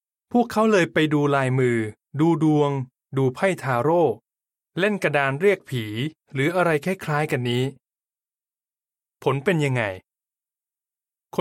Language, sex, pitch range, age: Thai, male, 125-180 Hz, 20-39